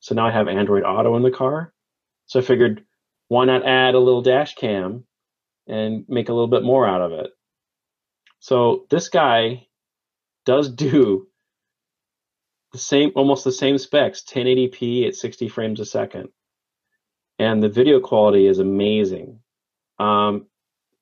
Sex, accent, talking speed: male, American, 150 wpm